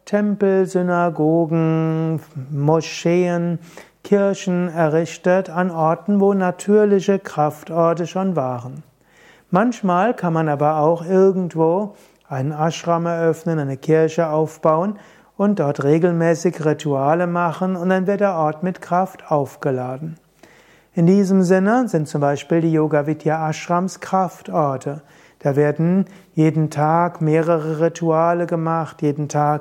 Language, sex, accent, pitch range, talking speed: German, male, German, 155-180 Hz, 115 wpm